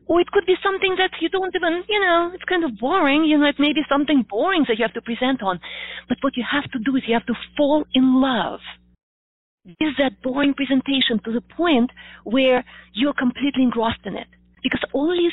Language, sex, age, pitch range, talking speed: English, female, 30-49, 215-290 Hz, 220 wpm